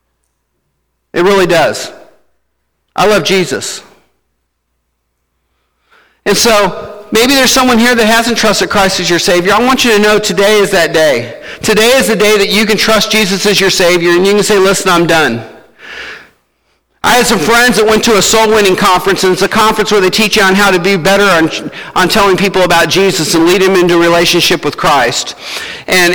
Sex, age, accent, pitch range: male, 50-69, American, 160-215 Hz